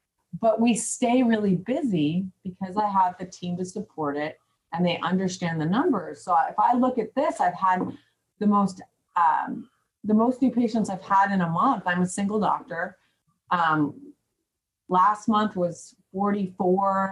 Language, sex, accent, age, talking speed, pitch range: English, female, American, 30-49, 165 wpm, 165-210 Hz